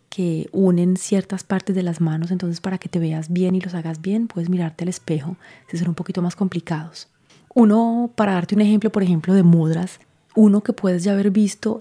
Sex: female